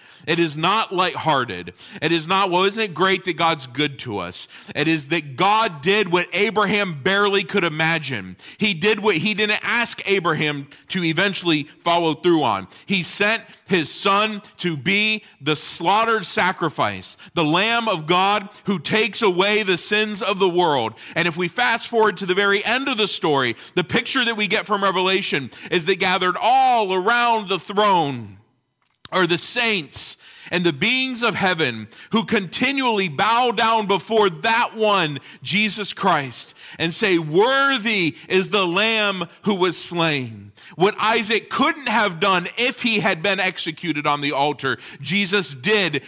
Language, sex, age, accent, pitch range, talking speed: English, male, 40-59, American, 160-210 Hz, 165 wpm